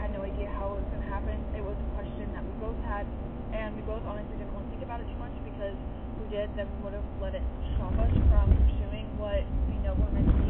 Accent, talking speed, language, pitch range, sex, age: American, 270 wpm, English, 75-85 Hz, female, 20-39